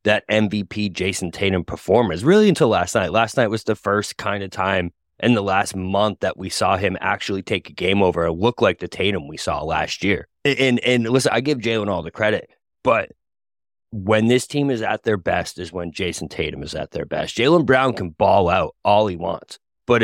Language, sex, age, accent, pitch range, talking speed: English, male, 20-39, American, 95-120 Hz, 220 wpm